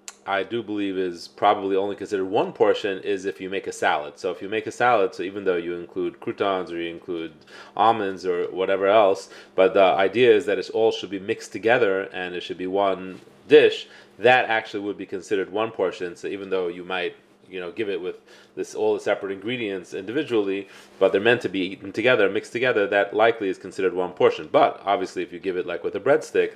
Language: English